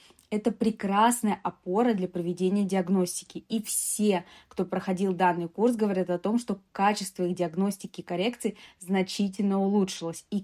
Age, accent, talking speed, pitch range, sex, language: 20-39, native, 140 wpm, 185-225 Hz, female, Russian